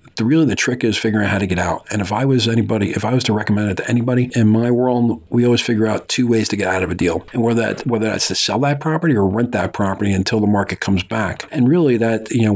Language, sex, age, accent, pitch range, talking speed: English, male, 40-59, American, 100-115 Hz, 295 wpm